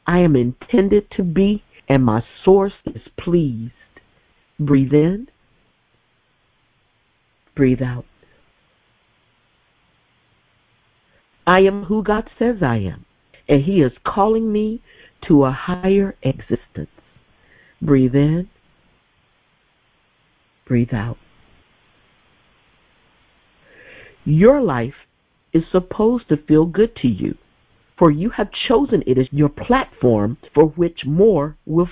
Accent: American